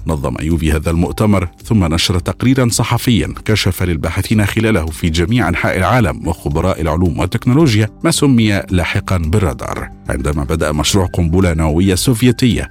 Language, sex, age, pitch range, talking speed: Arabic, male, 50-69, 80-105 Hz, 130 wpm